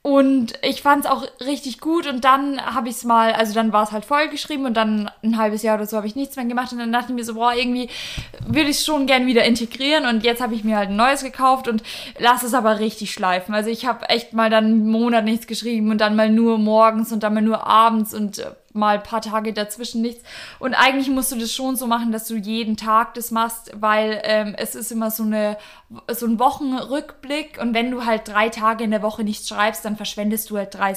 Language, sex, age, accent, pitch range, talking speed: German, female, 20-39, German, 220-285 Hz, 245 wpm